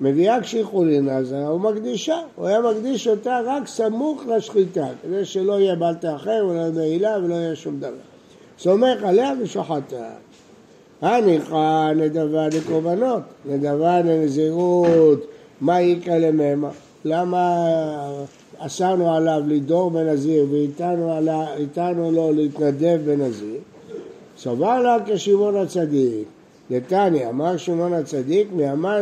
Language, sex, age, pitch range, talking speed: Hebrew, male, 60-79, 150-190 Hz, 110 wpm